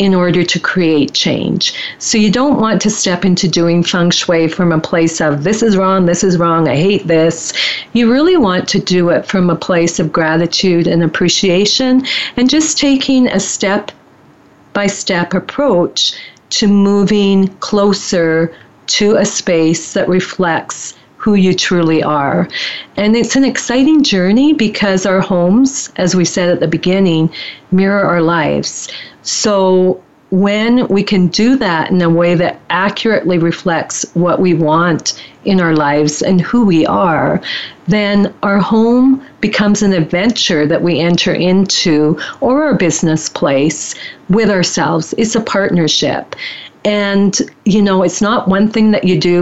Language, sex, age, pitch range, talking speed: English, female, 40-59, 170-205 Hz, 155 wpm